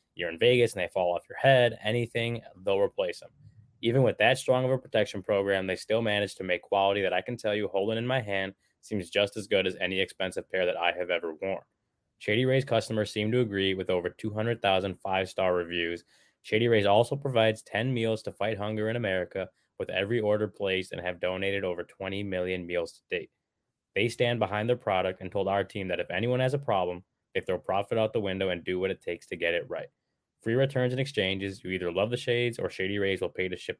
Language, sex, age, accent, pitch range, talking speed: English, male, 20-39, American, 95-120 Hz, 235 wpm